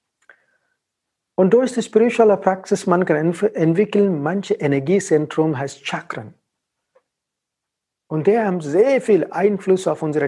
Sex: male